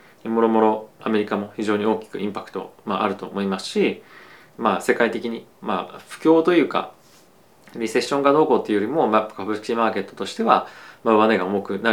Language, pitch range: Japanese, 95-120 Hz